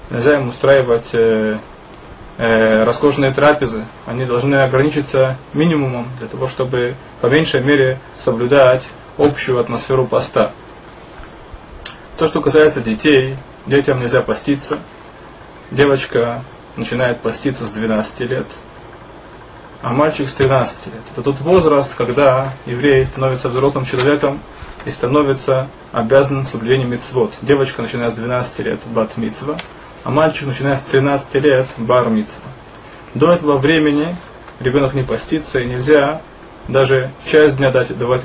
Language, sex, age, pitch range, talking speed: Russian, male, 20-39, 120-140 Hz, 120 wpm